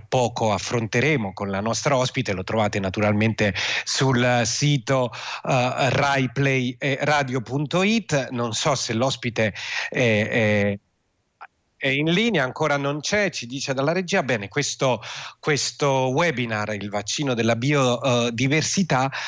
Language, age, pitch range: Italian, 30-49, 105-135 Hz